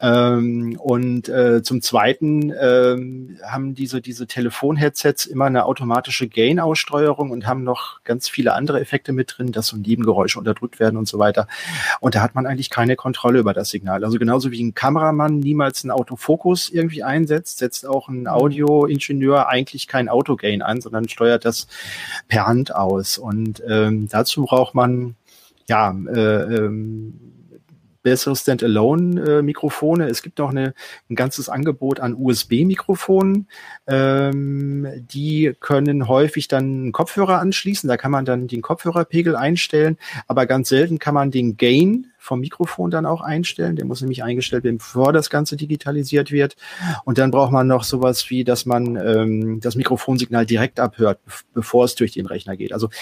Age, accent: 30-49, German